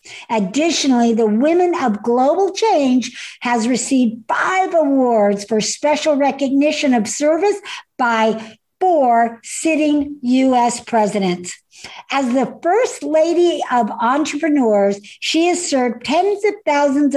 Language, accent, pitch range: English, American, 235-330 Hz